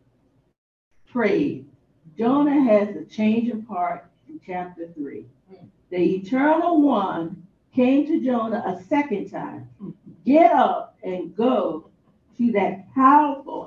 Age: 50-69